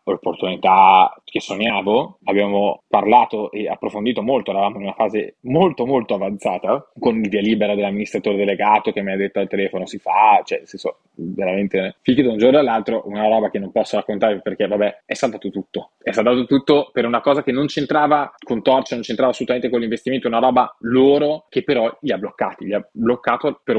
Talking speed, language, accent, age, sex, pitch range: 195 wpm, Italian, native, 20-39, male, 100-125 Hz